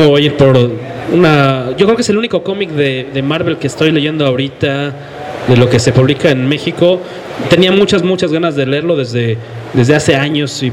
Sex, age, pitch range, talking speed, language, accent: male, 30-49, 130-155 Hz, 205 wpm, English, Mexican